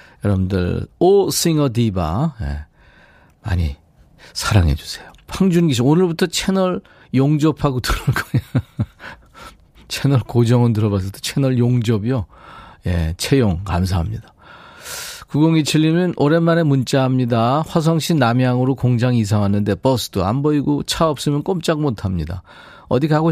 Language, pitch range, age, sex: Korean, 105-150 Hz, 40-59, male